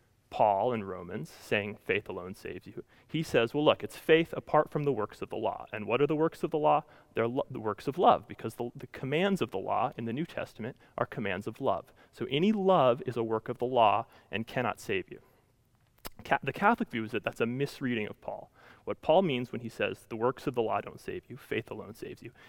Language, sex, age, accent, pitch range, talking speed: English, male, 30-49, American, 115-155 Hz, 240 wpm